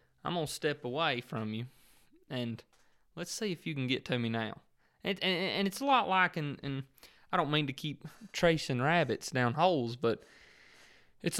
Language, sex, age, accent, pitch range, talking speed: English, male, 20-39, American, 115-150 Hz, 190 wpm